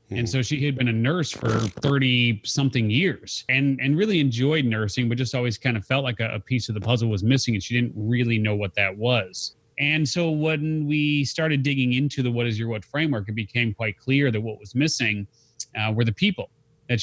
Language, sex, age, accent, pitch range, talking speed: English, male, 30-49, American, 110-135 Hz, 230 wpm